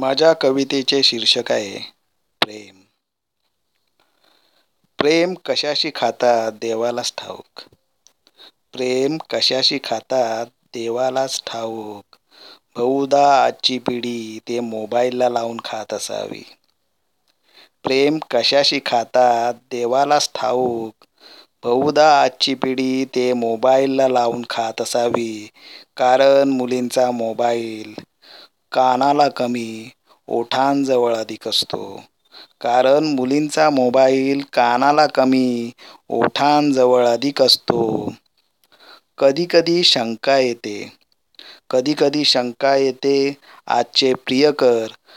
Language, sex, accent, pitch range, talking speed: Marathi, male, native, 120-140 Hz, 75 wpm